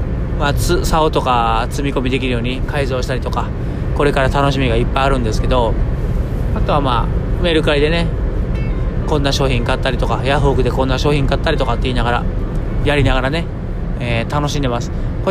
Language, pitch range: Japanese, 120-150 Hz